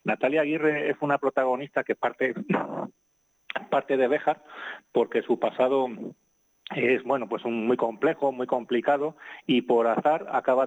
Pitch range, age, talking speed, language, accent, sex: 115-135 Hz, 30-49, 125 wpm, Spanish, Spanish, male